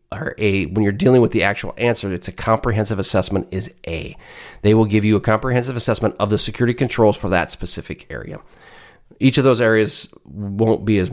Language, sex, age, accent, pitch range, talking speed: English, male, 30-49, American, 95-120 Hz, 195 wpm